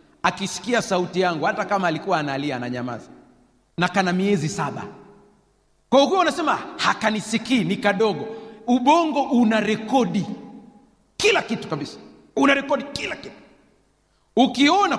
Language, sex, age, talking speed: Swahili, male, 40-59, 115 wpm